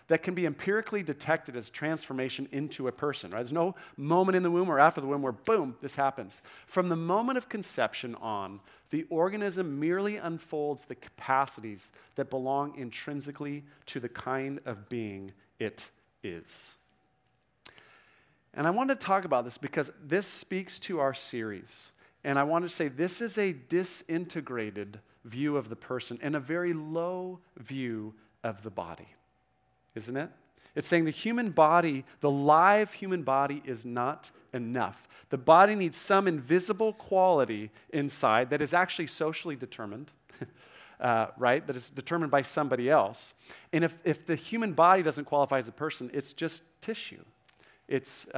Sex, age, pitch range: male, 40-59, 125-170 Hz